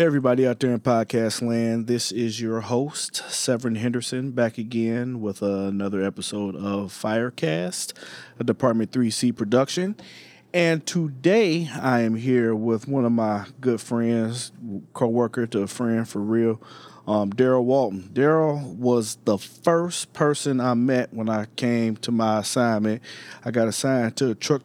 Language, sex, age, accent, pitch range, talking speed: English, male, 30-49, American, 105-125 Hz, 155 wpm